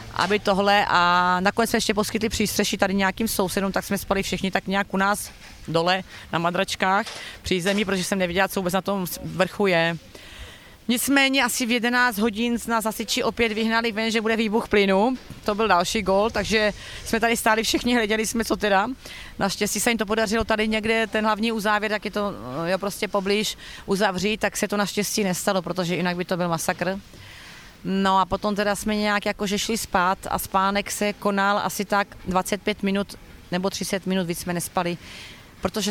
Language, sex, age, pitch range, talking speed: Slovak, female, 30-49, 185-220 Hz, 190 wpm